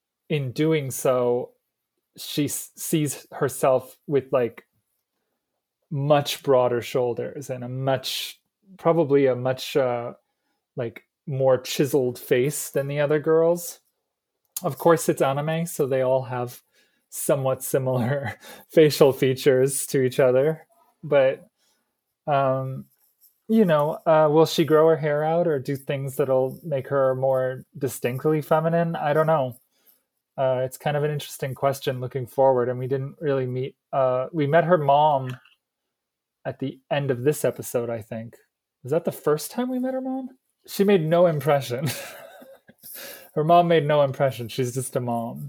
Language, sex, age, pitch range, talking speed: English, male, 30-49, 130-165 Hz, 150 wpm